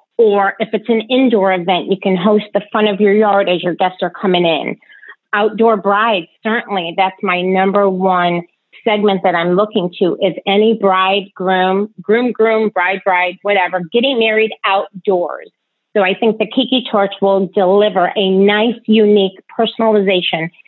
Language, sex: English, female